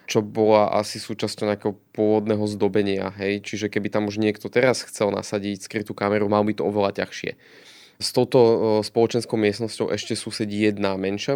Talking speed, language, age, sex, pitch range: 165 wpm, Slovak, 20-39, male, 100-110 Hz